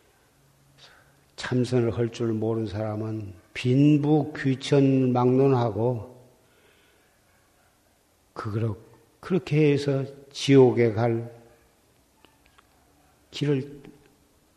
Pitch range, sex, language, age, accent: 115-145 Hz, male, Korean, 50-69, native